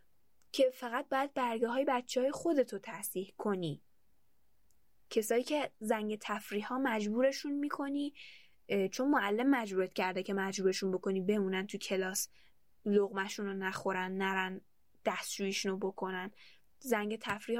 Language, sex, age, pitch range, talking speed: Persian, female, 10-29, 200-270 Hz, 120 wpm